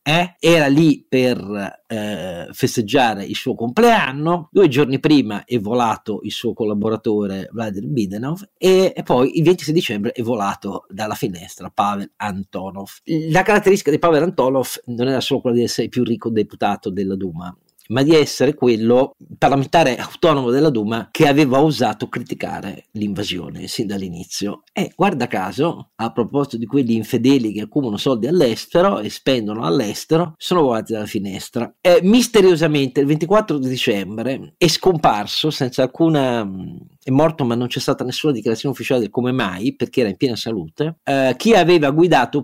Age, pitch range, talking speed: 40-59, 110-150 Hz, 160 wpm